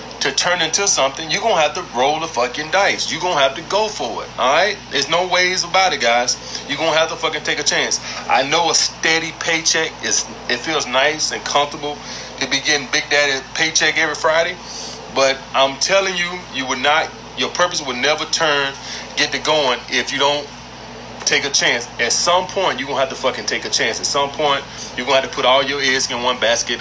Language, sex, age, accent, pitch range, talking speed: English, male, 30-49, American, 130-160 Hz, 230 wpm